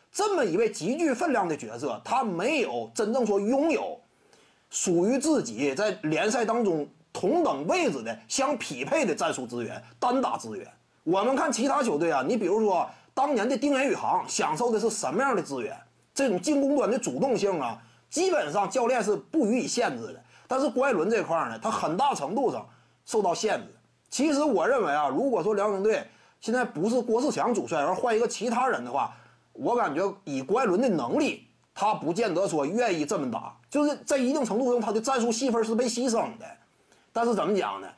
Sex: male